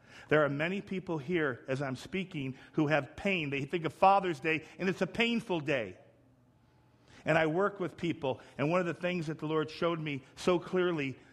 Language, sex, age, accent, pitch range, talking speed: English, male, 50-69, American, 125-180 Hz, 200 wpm